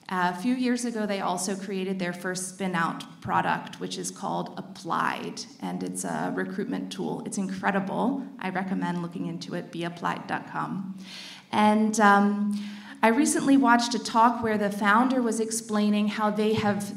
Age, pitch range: 30-49, 195-235 Hz